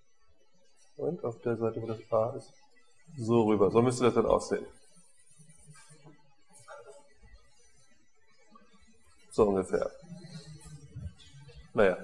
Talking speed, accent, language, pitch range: 90 wpm, German, German, 110-150 Hz